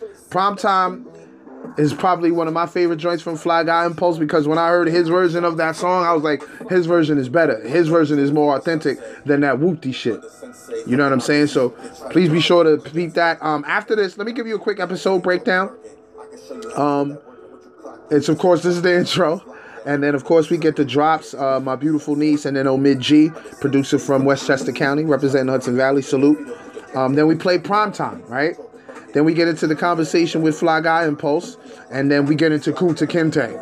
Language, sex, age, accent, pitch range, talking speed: English, male, 20-39, American, 145-175 Hz, 210 wpm